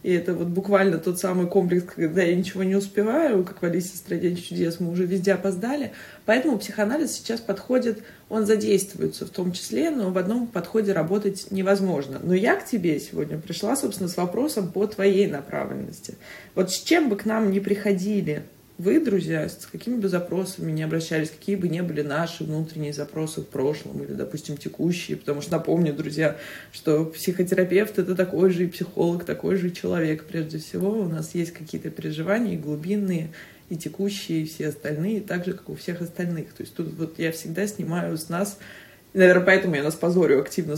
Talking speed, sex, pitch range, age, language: 185 wpm, female, 165-200 Hz, 20-39, Russian